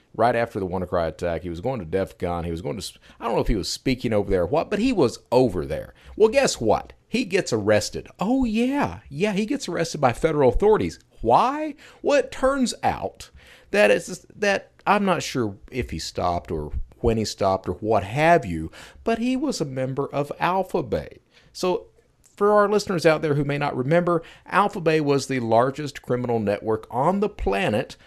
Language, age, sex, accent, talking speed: English, 40-59, male, American, 190 wpm